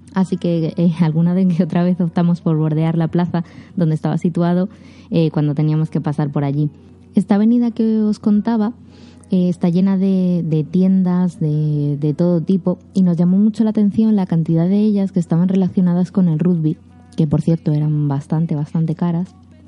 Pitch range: 160-195 Hz